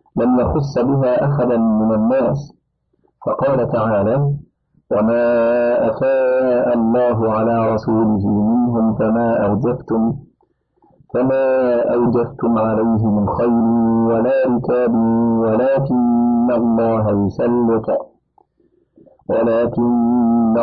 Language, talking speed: Arabic, 75 wpm